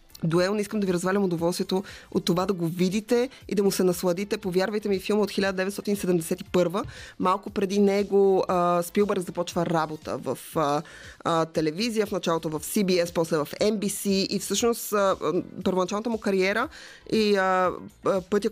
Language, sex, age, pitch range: Bulgarian, female, 20-39, 170-205 Hz